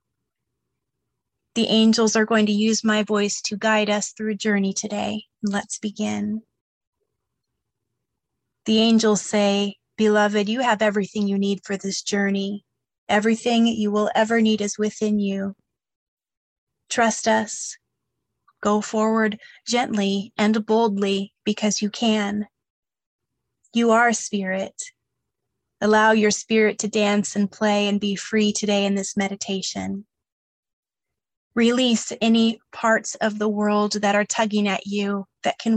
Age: 30-49